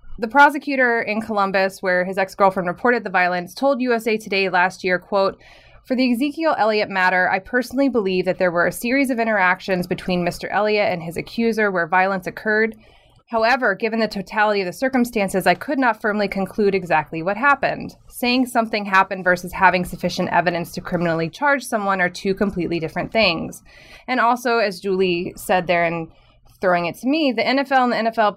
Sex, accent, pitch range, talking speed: female, American, 180-225 Hz, 185 wpm